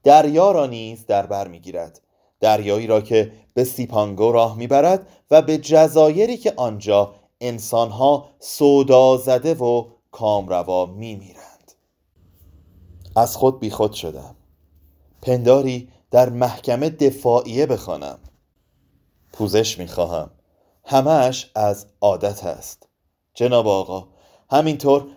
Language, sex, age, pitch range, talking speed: Persian, male, 30-49, 100-150 Hz, 105 wpm